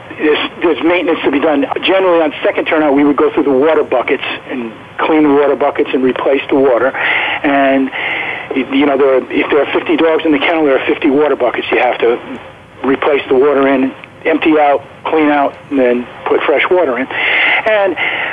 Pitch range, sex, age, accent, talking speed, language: 145-180 Hz, male, 50-69, American, 205 wpm, English